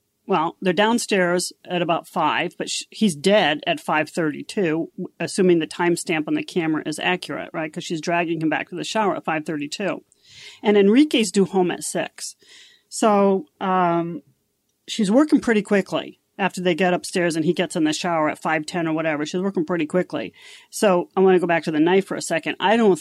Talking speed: 195 wpm